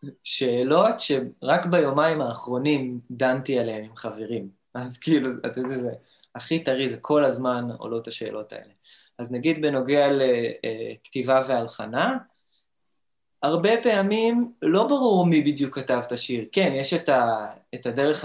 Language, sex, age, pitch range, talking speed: Hebrew, male, 20-39, 125-165 Hz, 140 wpm